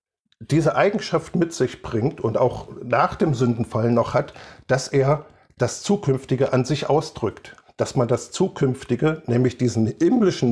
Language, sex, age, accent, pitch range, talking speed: German, male, 50-69, German, 120-150 Hz, 150 wpm